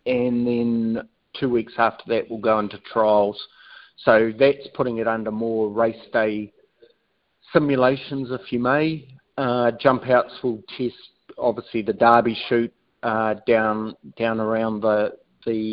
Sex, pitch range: male, 110-130 Hz